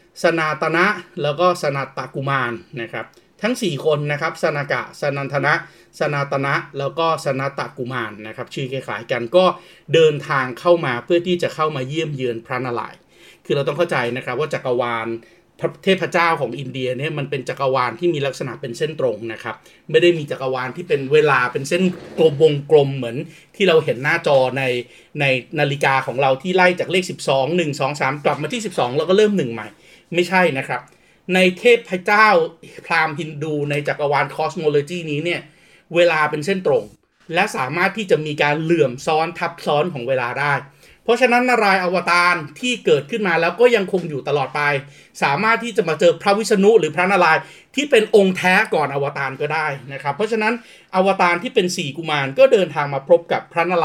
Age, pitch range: 30-49, 140-180 Hz